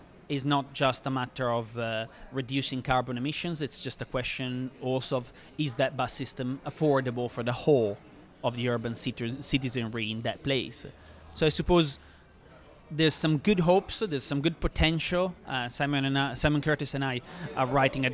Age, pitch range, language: 30-49, 125-150 Hz, English